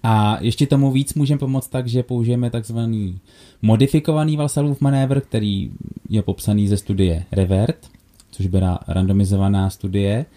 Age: 20-39